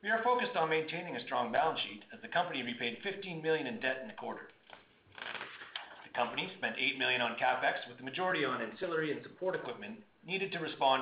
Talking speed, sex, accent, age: 205 wpm, male, American, 40-59